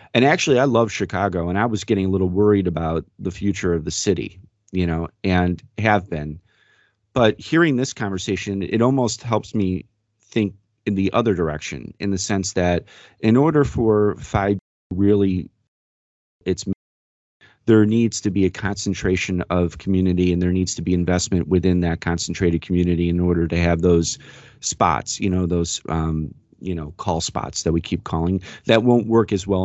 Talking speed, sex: 175 wpm, male